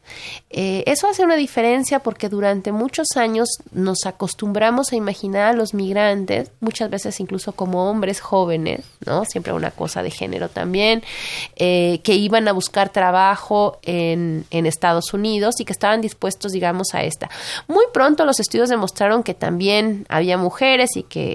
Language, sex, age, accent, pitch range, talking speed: Spanish, female, 30-49, Mexican, 185-235 Hz, 160 wpm